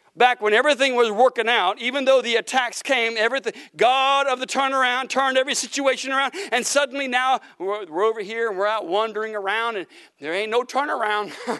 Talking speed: 185 wpm